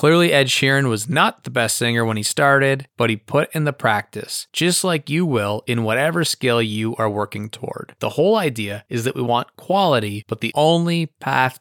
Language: English